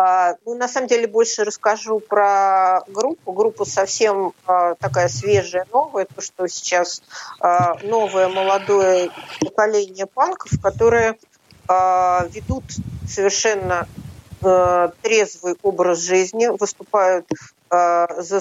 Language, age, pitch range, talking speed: Russian, 50-69, 175-215 Hz, 90 wpm